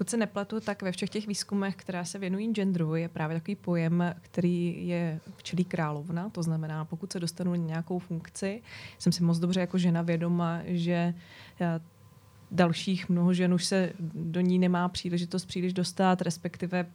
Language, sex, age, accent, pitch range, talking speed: Czech, female, 20-39, native, 165-180 Hz, 170 wpm